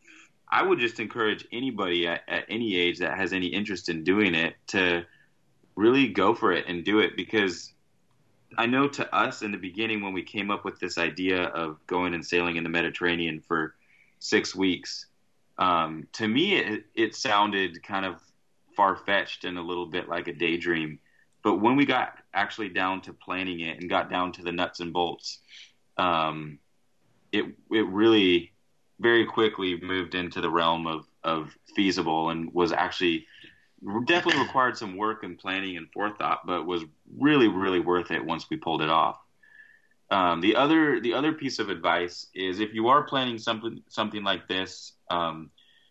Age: 30-49